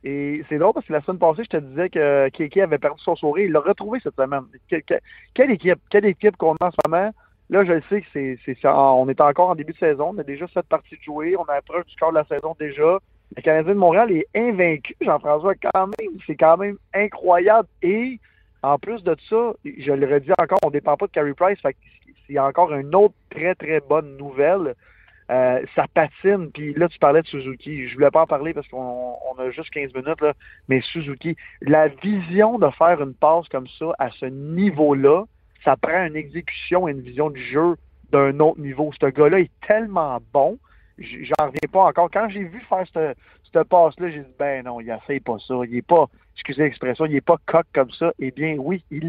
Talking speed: 235 wpm